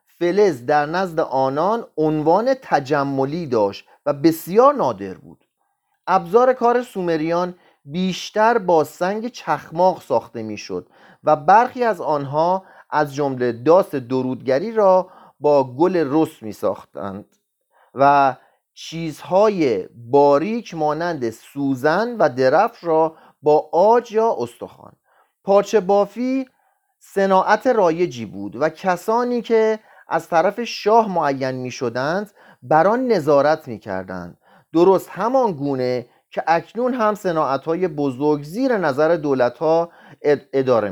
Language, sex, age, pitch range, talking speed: Persian, male, 40-59, 140-210 Hz, 110 wpm